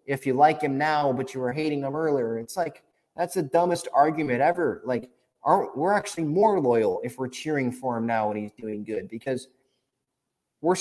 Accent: American